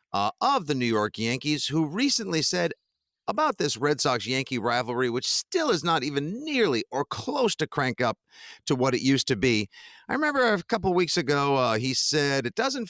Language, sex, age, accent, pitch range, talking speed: English, male, 50-69, American, 110-165 Hz, 195 wpm